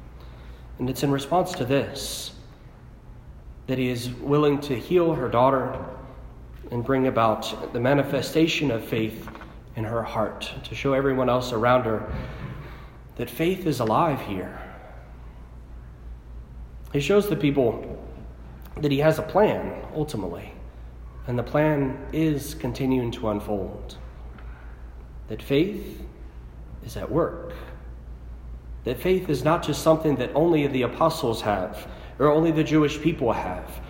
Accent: American